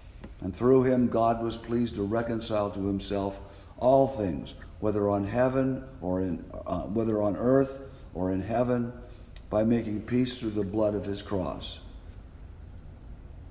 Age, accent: 60-79, American